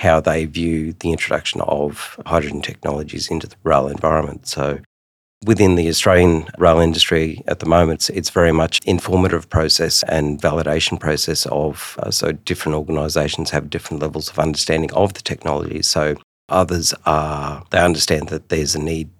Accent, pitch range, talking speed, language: Australian, 75-85 Hz, 160 wpm, English